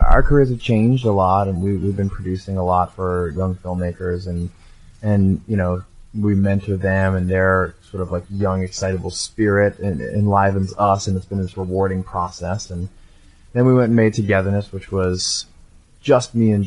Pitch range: 95-110 Hz